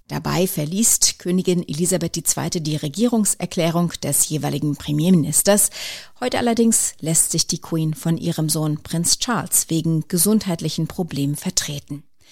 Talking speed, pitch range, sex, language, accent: 120 wpm, 165-215 Hz, female, German, German